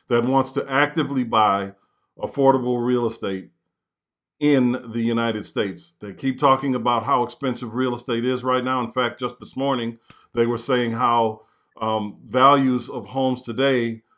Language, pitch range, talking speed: English, 115-135 Hz, 155 wpm